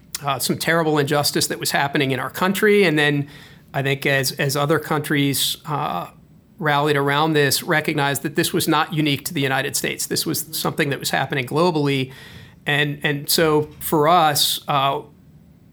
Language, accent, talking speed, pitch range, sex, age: English, American, 170 wpm, 140-160 Hz, male, 40-59